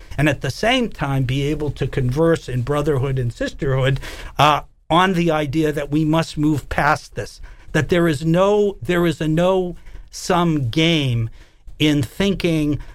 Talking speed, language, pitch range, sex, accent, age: 160 wpm, English, 140-185 Hz, male, American, 50-69